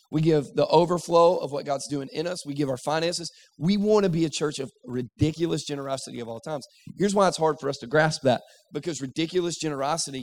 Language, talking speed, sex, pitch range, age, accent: English, 225 wpm, male, 135-195 Hz, 40-59, American